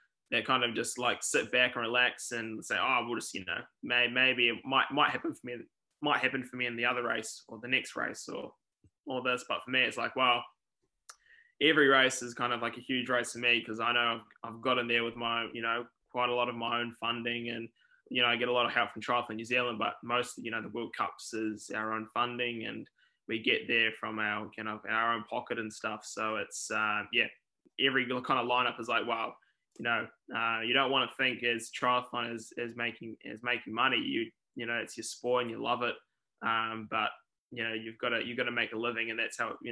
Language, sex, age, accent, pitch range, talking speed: English, male, 20-39, Australian, 115-125 Hz, 250 wpm